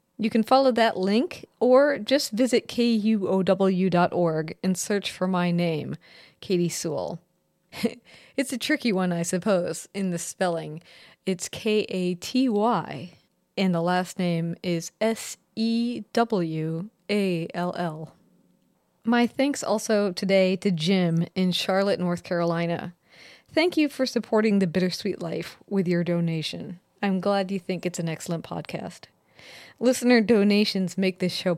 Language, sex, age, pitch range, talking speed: English, female, 30-49, 180-235 Hz, 125 wpm